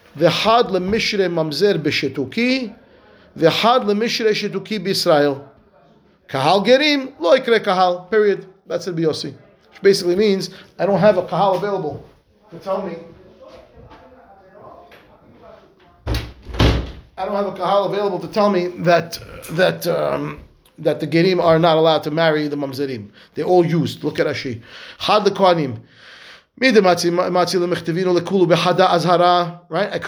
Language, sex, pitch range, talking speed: English, male, 165-205 Hz, 130 wpm